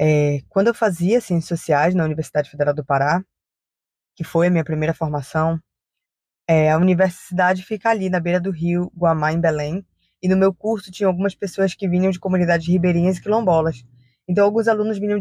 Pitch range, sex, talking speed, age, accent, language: 160-195 Hz, female, 185 wpm, 20-39, Brazilian, Portuguese